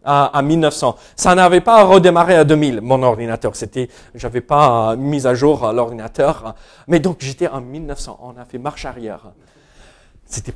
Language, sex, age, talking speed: French, male, 40-59, 160 wpm